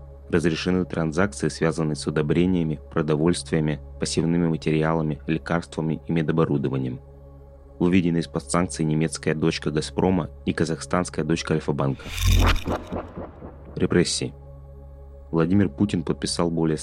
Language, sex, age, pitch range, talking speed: Russian, male, 20-39, 70-85 Hz, 95 wpm